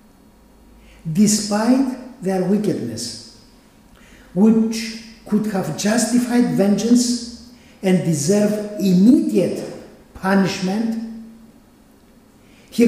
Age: 60-79